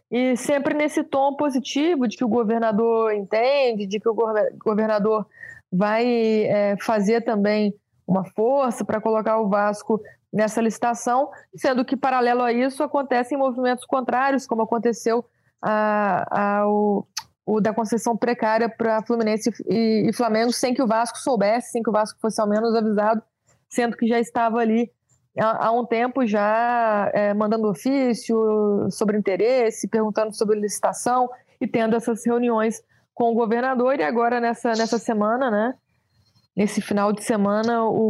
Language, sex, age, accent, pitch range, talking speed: Portuguese, female, 20-39, Brazilian, 210-240 Hz, 150 wpm